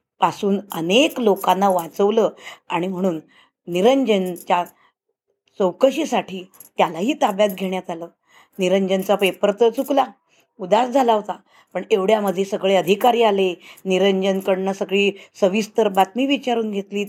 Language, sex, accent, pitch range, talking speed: Marathi, female, native, 195-235 Hz, 105 wpm